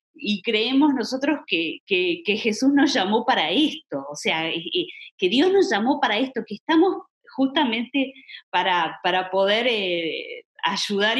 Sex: female